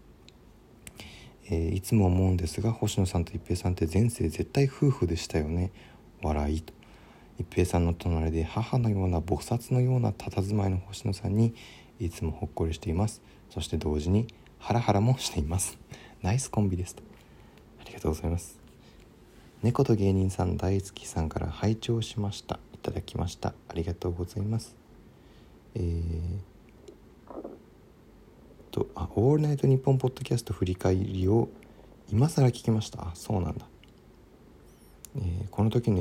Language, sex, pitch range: Japanese, male, 85-115 Hz